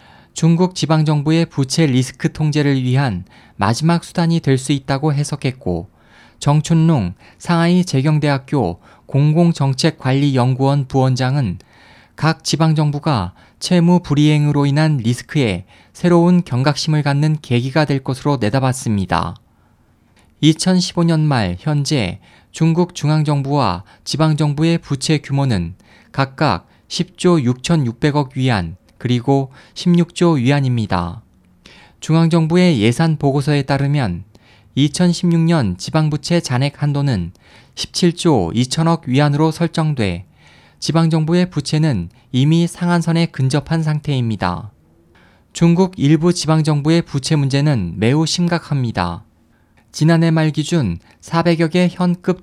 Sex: male